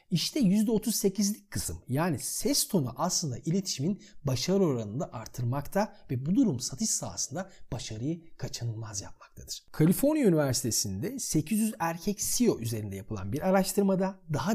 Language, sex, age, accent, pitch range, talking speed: Turkish, male, 40-59, native, 115-185 Hz, 120 wpm